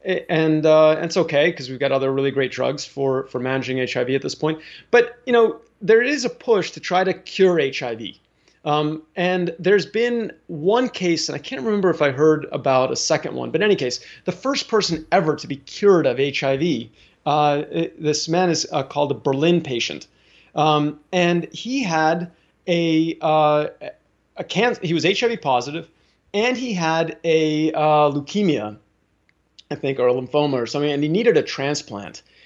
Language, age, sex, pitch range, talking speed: English, 30-49, male, 145-185 Hz, 185 wpm